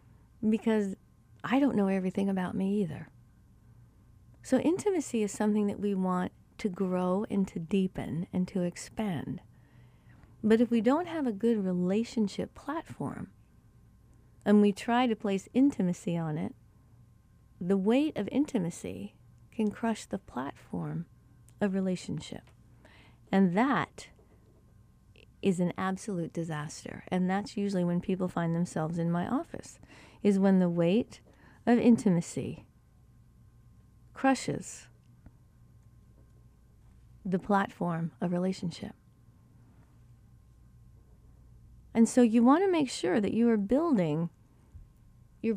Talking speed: 115 wpm